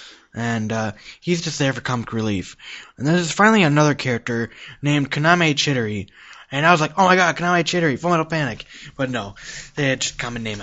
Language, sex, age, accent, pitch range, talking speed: English, male, 20-39, American, 120-160 Hz, 190 wpm